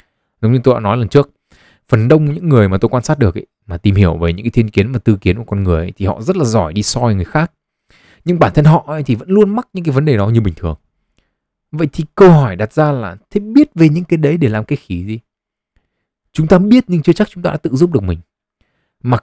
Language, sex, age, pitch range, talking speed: Vietnamese, male, 20-39, 100-145 Hz, 275 wpm